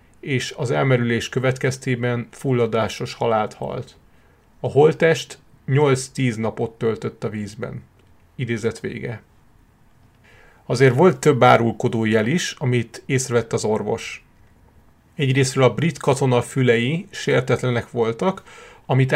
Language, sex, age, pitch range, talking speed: Hungarian, male, 30-49, 115-130 Hz, 105 wpm